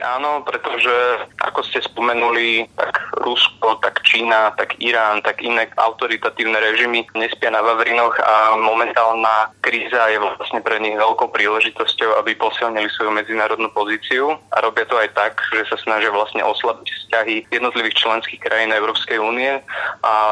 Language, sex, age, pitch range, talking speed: Slovak, male, 20-39, 105-115 Hz, 145 wpm